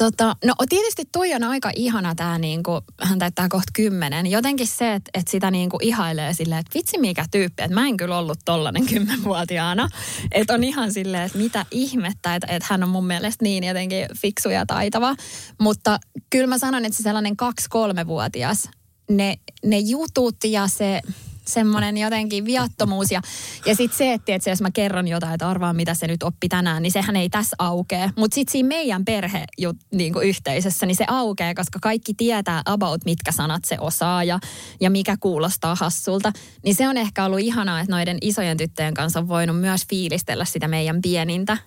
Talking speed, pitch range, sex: 185 wpm, 175-215 Hz, female